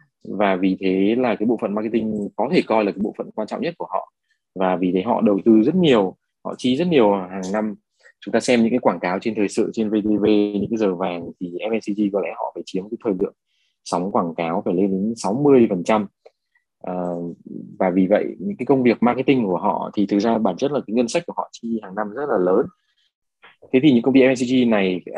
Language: Vietnamese